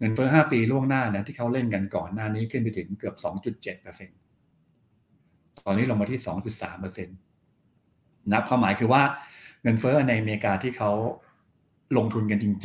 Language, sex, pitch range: Thai, male, 100-125 Hz